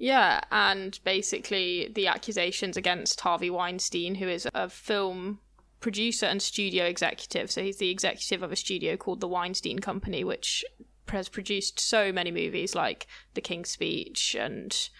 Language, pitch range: English, 180-210 Hz